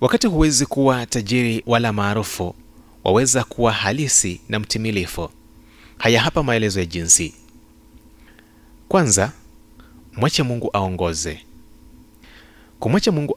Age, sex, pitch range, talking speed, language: 30-49, male, 80-115 Hz, 100 wpm, Swahili